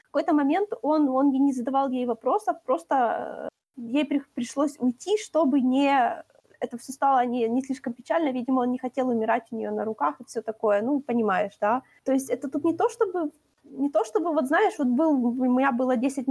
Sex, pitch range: female, 250-315 Hz